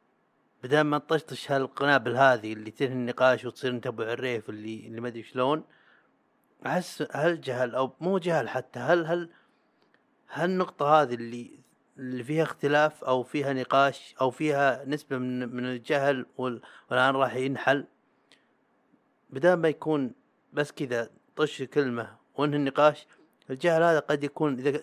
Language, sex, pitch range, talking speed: Arabic, male, 130-160 Hz, 140 wpm